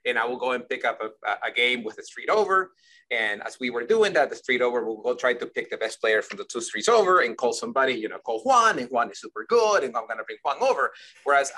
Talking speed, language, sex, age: 290 wpm, English, male, 30-49